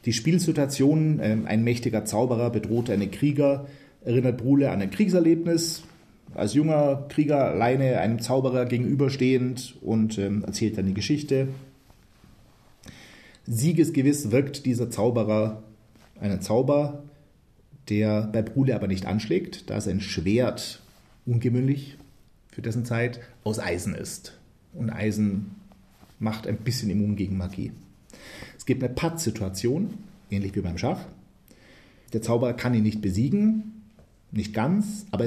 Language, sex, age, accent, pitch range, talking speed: German, male, 40-59, German, 105-140 Hz, 125 wpm